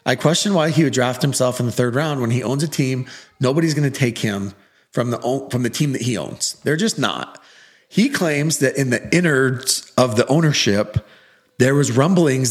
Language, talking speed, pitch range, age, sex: English, 210 wpm, 110-145 Hz, 40-59, male